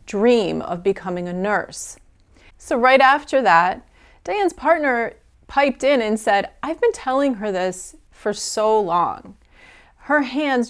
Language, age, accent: English, 30-49, American